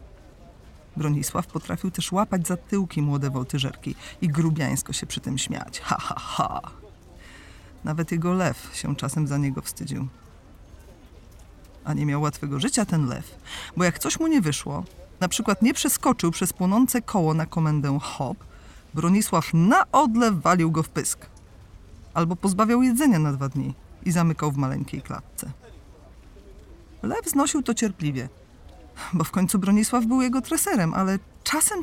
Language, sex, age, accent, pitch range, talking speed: Polish, female, 40-59, native, 150-240 Hz, 150 wpm